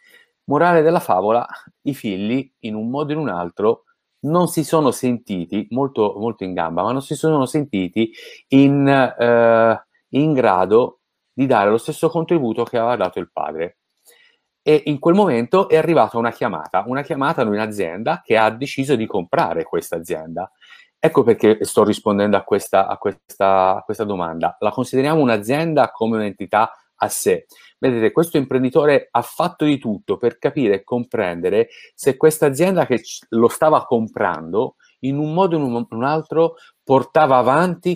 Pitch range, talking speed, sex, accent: 120-170 Hz, 165 wpm, male, native